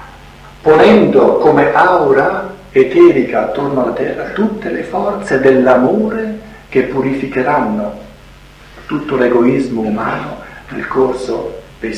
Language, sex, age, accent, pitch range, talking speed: Italian, male, 60-79, native, 115-150 Hz, 95 wpm